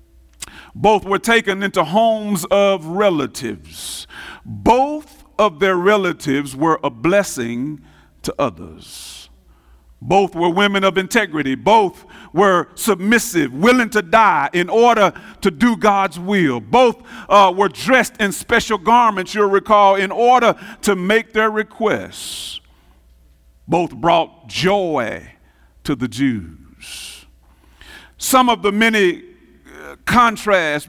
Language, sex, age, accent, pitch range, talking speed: English, male, 50-69, American, 165-220 Hz, 115 wpm